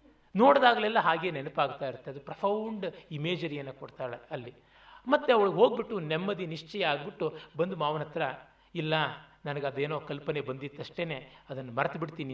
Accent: native